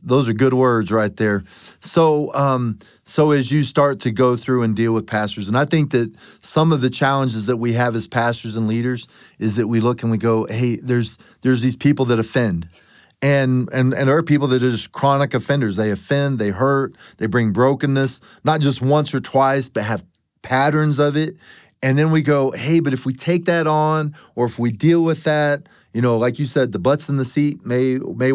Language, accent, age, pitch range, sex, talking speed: English, American, 30-49, 115-140 Hz, male, 220 wpm